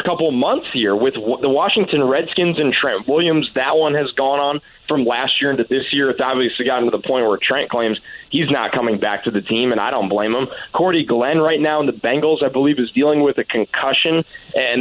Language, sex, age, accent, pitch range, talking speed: English, male, 20-39, American, 135-170 Hz, 235 wpm